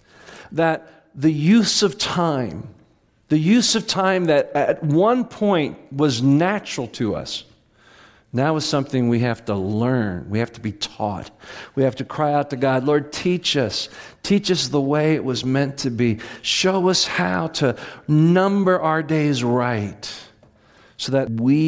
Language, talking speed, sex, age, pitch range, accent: English, 165 wpm, male, 50-69, 125-200 Hz, American